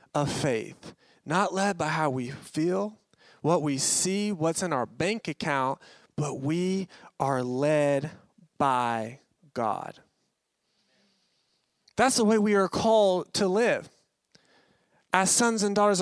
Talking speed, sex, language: 125 wpm, male, English